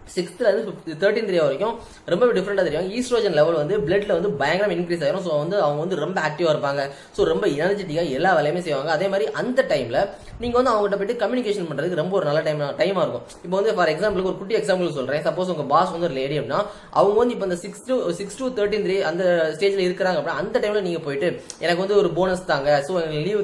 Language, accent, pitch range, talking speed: Tamil, native, 155-205 Hz, 190 wpm